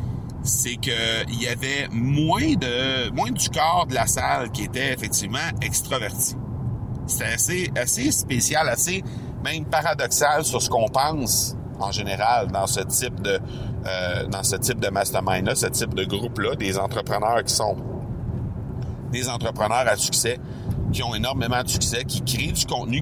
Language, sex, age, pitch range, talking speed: French, male, 60-79, 110-130 Hz, 155 wpm